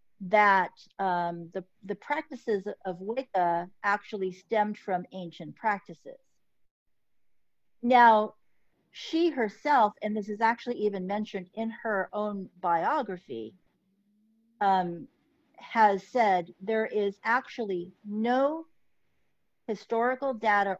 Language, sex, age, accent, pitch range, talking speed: English, female, 50-69, American, 185-230 Hz, 100 wpm